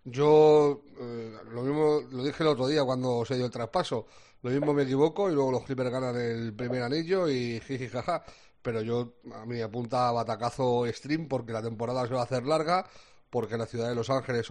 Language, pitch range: Spanish, 115-140 Hz